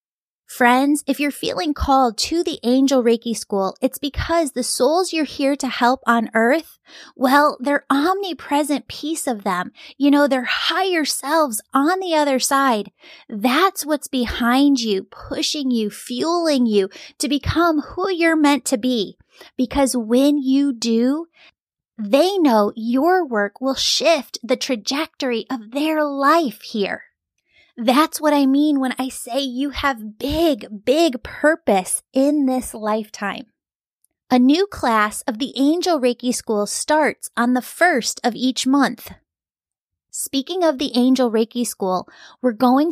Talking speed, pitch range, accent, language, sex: 145 wpm, 235-300 Hz, American, English, female